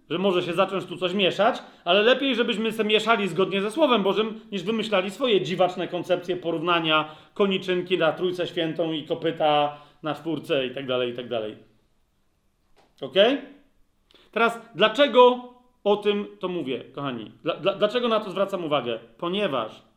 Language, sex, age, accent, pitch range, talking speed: Polish, male, 40-59, native, 155-220 Hz, 150 wpm